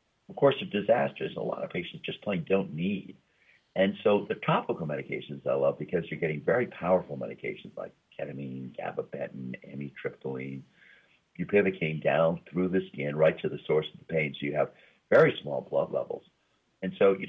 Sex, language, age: male, English, 50-69